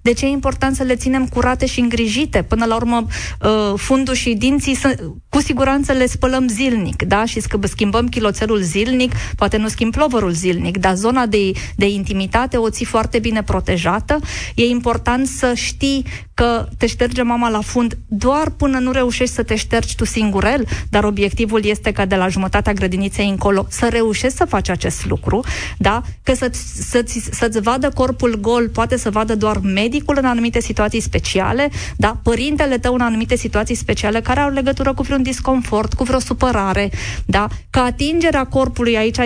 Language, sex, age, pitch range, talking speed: Romanian, female, 20-39, 210-250 Hz, 175 wpm